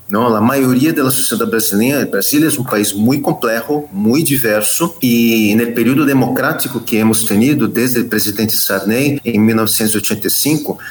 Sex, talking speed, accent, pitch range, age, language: male, 160 wpm, Brazilian, 110-145 Hz, 40-59, Spanish